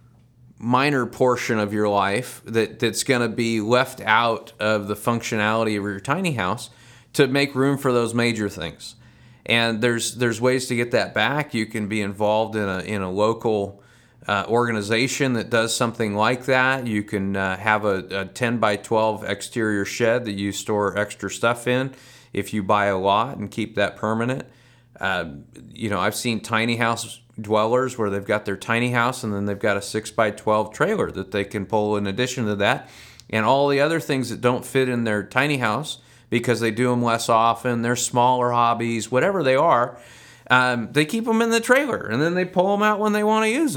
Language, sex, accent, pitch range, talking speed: English, male, American, 105-130 Hz, 205 wpm